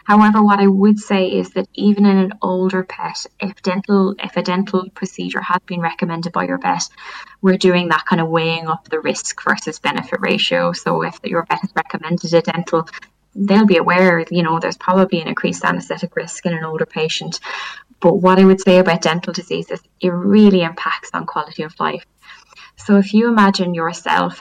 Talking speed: 190 wpm